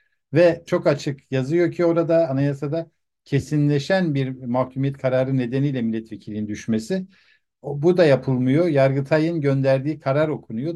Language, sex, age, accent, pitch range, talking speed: Turkish, male, 50-69, native, 120-155 Hz, 125 wpm